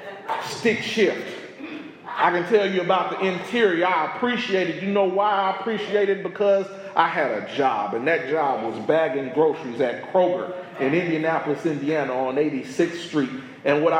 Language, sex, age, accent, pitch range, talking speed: English, male, 40-59, American, 140-195 Hz, 165 wpm